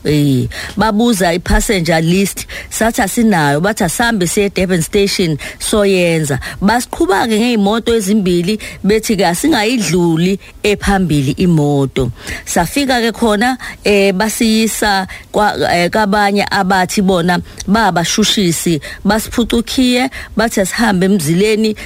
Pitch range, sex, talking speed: 180-225 Hz, female, 105 wpm